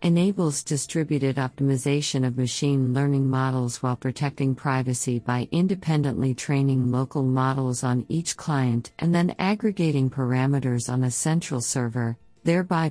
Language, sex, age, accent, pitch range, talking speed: English, female, 50-69, American, 130-160 Hz, 125 wpm